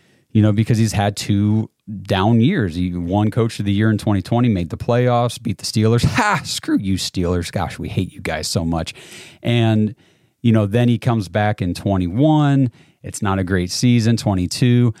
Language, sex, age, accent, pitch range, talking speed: English, male, 30-49, American, 95-120 Hz, 190 wpm